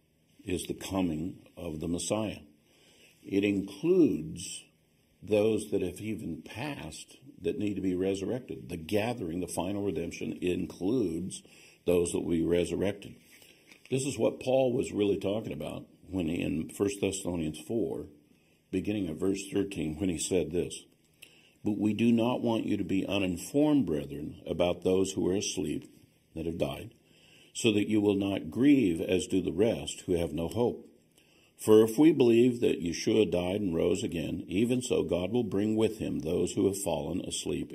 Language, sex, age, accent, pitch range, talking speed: English, male, 50-69, American, 85-115 Hz, 165 wpm